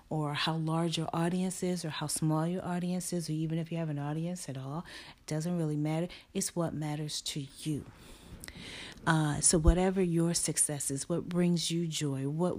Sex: female